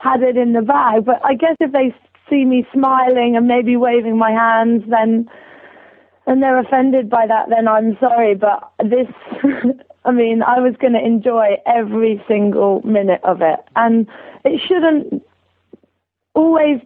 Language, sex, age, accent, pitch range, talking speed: English, female, 30-49, British, 230-285 Hz, 160 wpm